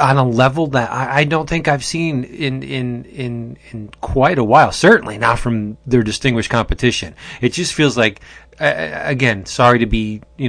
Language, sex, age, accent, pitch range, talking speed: English, male, 30-49, American, 115-140 Hz, 185 wpm